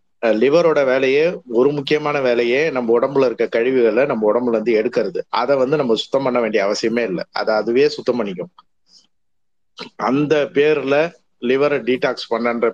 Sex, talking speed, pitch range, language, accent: male, 135 wpm, 115-145 Hz, Tamil, native